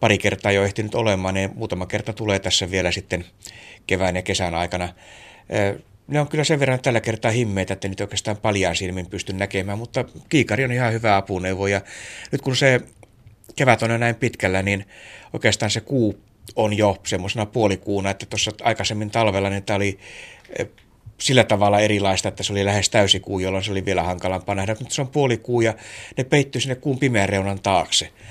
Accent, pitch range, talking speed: native, 95-115 Hz, 190 wpm